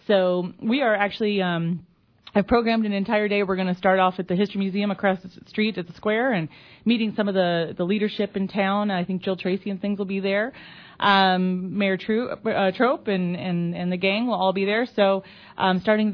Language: English